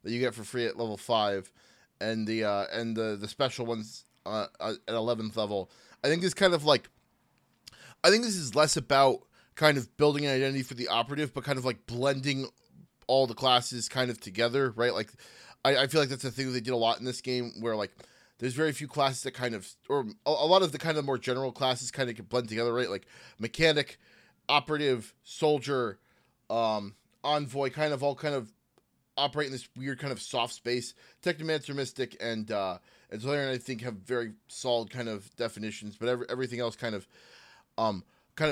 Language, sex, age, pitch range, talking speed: English, male, 20-39, 115-140 Hz, 210 wpm